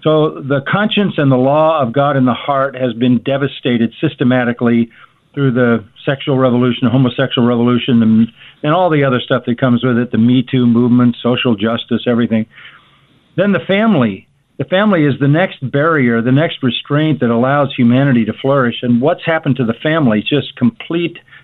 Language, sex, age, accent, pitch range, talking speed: English, male, 50-69, American, 120-145 Hz, 180 wpm